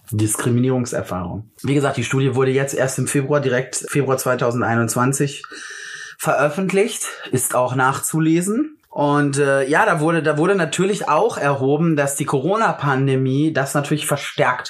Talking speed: 140 wpm